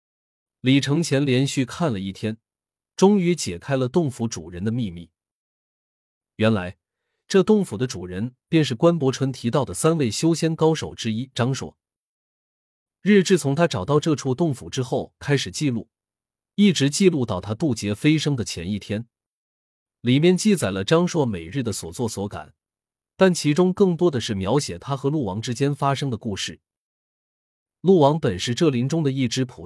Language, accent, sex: Chinese, native, male